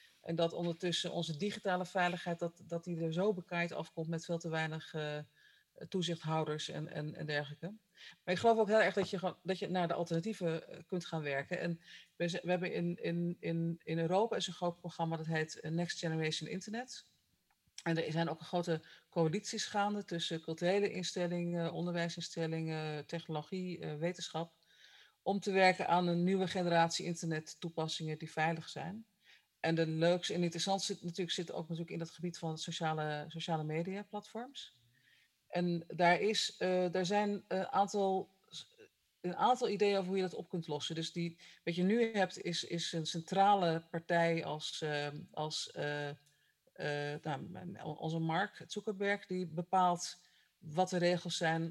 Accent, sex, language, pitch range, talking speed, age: Dutch, female, Dutch, 165-185 Hz, 160 wpm, 40-59